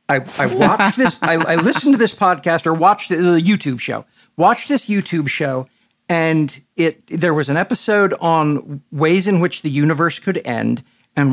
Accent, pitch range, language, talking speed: American, 145-190 Hz, English, 185 wpm